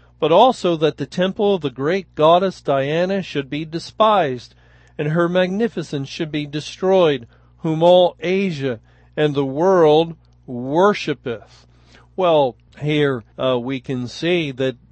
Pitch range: 130-165 Hz